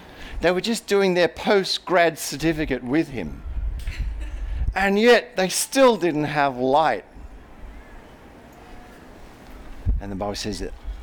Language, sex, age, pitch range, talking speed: English, male, 50-69, 80-135 Hz, 115 wpm